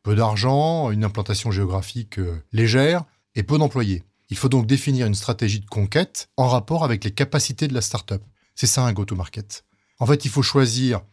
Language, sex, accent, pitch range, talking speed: French, male, French, 105-150 Hz, 185 wpm